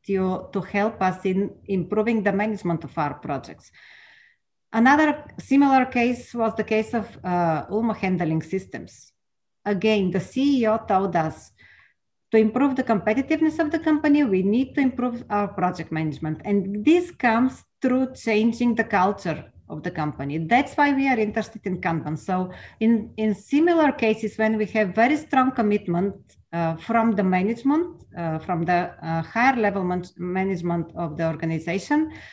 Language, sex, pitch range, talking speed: English, female, 180-240 Hz, 155 wpm